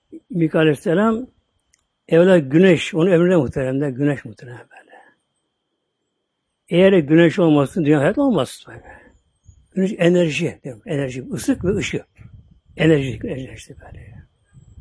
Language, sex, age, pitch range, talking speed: Turkish, male, 60-79, 140-190 Hz, 110 wpm